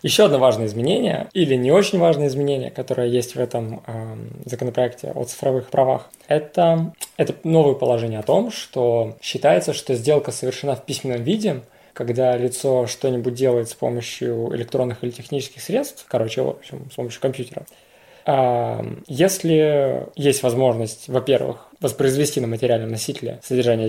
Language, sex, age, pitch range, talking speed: Russian, male, 20-39, 125-145 Hz, 145 wpm